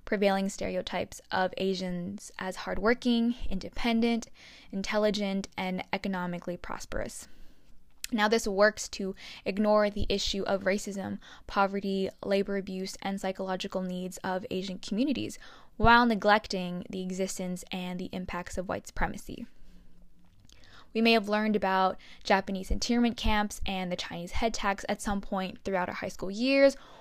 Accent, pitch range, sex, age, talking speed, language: American, 190-220 Hz, female, 10-29, 135 wpm, English